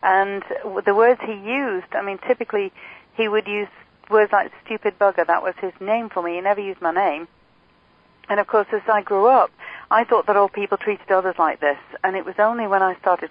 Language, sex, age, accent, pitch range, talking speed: English, female, 40-59, British, 170-215 Hz, 220 wpm